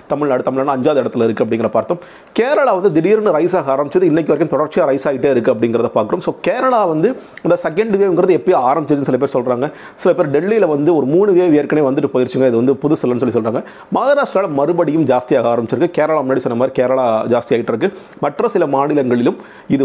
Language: Tamil